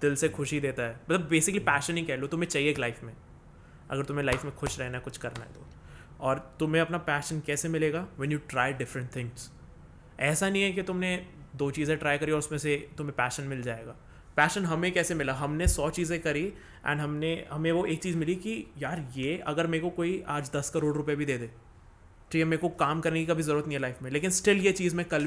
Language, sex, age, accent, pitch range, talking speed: Hindi, male, 20-39, native, 135-175 Hz, 245 wpm